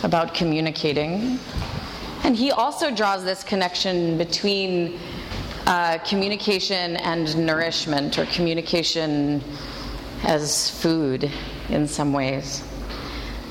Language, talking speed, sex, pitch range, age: English, 90 wpm, female, 165-210 Hz, 30-49